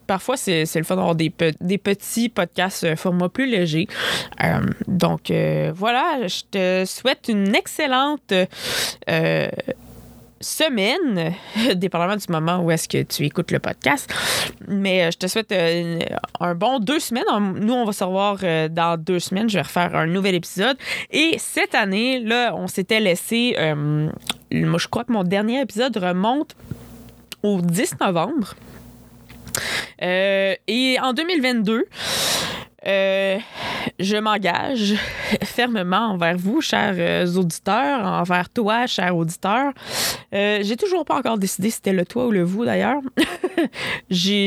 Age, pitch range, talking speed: 20-39, 180-230 Hz, 145 wpm